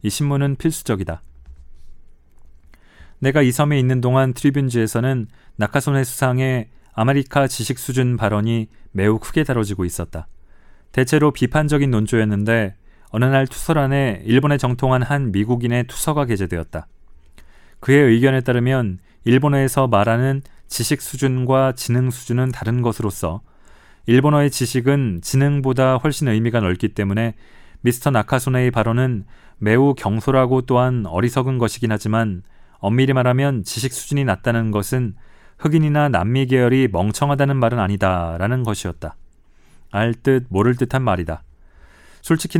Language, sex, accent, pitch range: Korean, male, native, 100-135 Hz